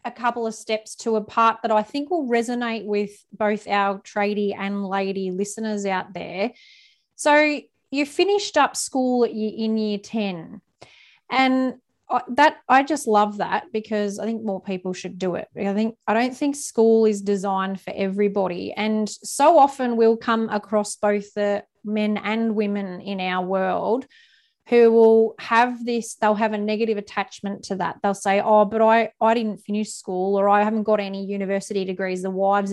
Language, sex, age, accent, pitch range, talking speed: English, female, 20-39, Australian, 195-230 Hz, 175 wpm